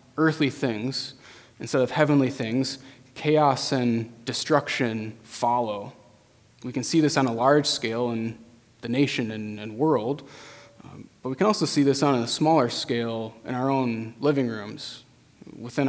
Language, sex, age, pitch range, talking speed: English, male, 20-39, 120-145 Hz, 155 wpm